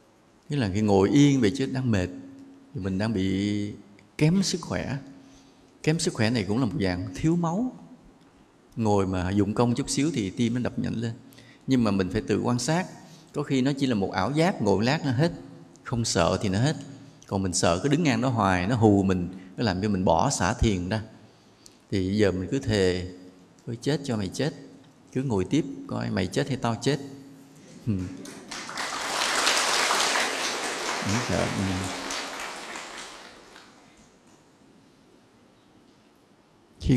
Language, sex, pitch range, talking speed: English, male, 95-135 Hz, 165 wpm